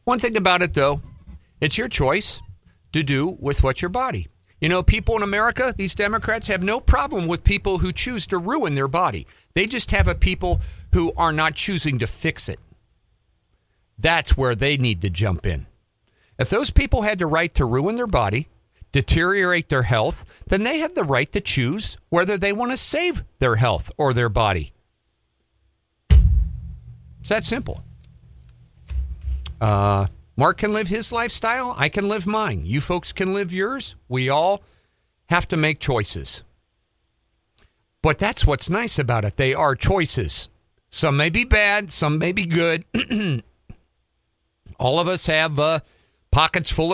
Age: 50-69